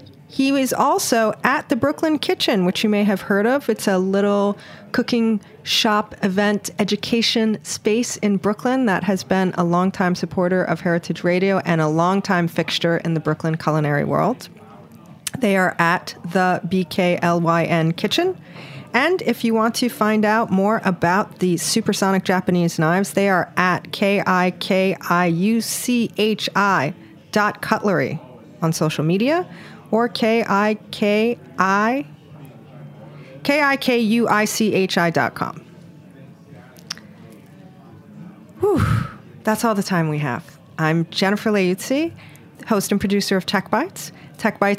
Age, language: 40-59, English